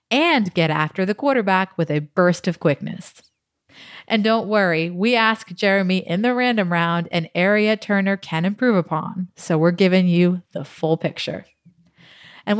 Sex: female